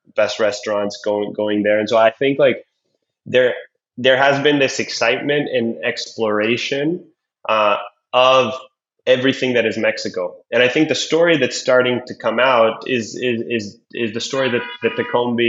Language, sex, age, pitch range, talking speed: English, male, 20-39, 110-140 Hz, 165 wpm